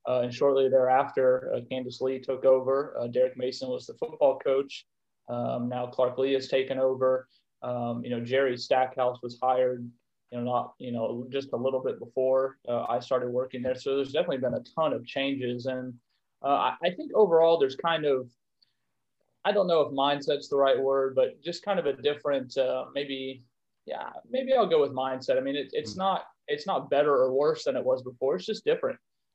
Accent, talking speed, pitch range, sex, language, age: American, 200 wpm, 125-140 Hz, male, English, 30-49